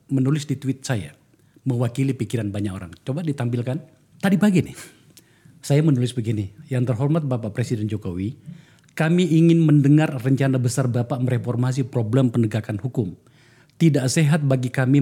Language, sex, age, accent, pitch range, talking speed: Indonesian, male, 40-59, native, 115-145 Hz, 140 wpm